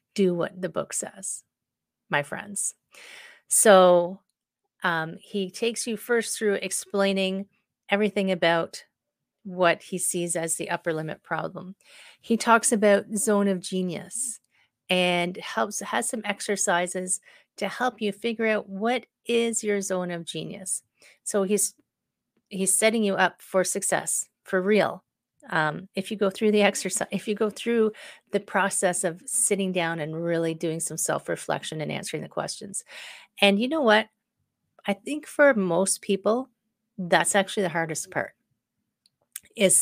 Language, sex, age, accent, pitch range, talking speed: English, female, 40-59, American, 180-220 Hz, 145 wpm